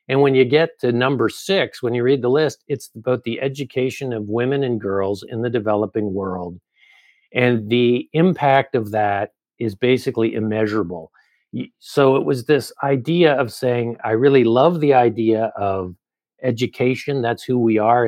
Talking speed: 165 wpm